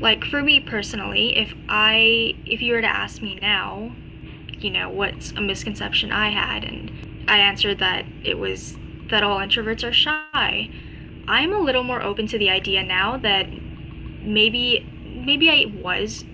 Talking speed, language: 165 wpm, English